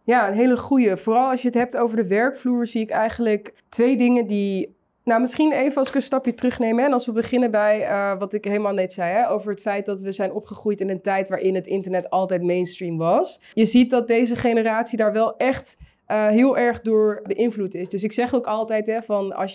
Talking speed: 240 wpm